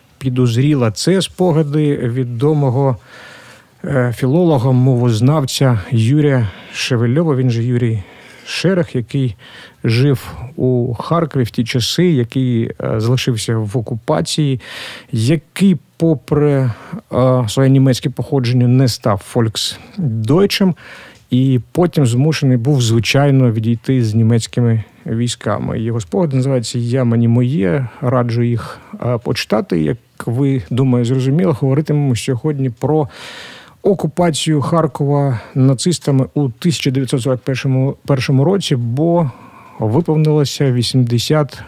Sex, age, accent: male, 50-69, native